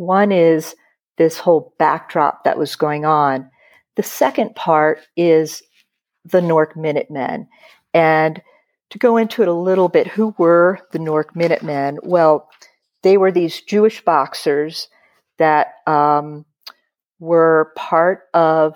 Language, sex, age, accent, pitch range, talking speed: English, female, 50-69, American, 155-195 Hz, 130 wpm